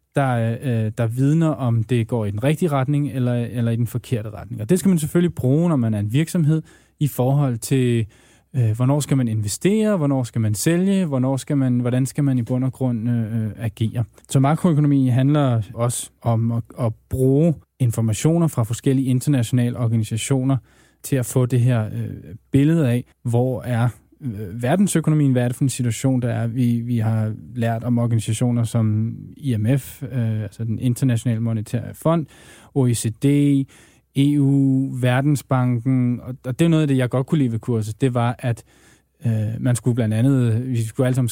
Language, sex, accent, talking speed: Danish, male, native, 180 wpm